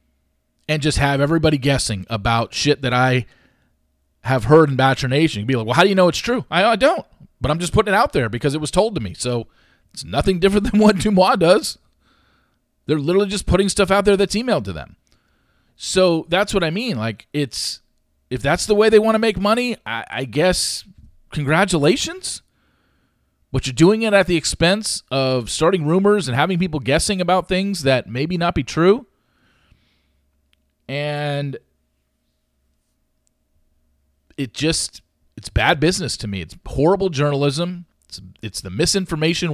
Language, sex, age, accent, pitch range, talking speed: English, male, 40-59, American, 105-175 Hz, 175 wpm